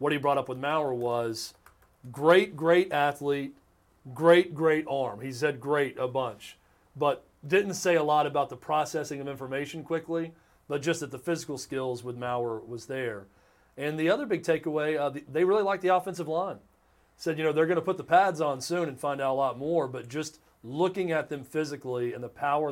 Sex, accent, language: male, American, English